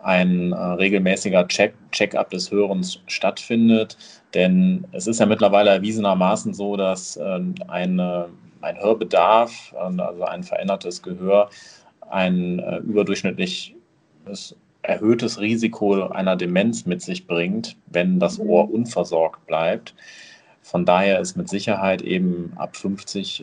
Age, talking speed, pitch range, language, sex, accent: 30-49, 120 wpm, 90-110 Hz, German, male, German